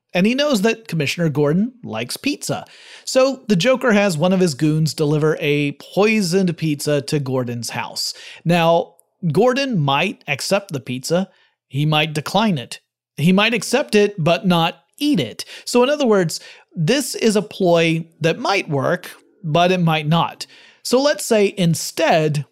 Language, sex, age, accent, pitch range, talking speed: English, male, 30-49, American, 150-205 Hz, 160 wpm